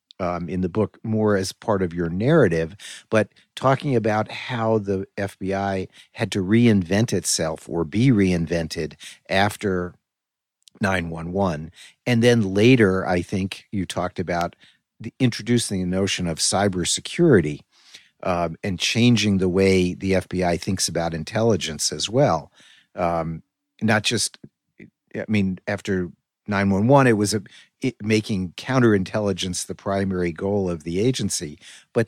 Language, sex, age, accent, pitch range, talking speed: English, male, 50-69, American, 90-110 Hz, 140 wpm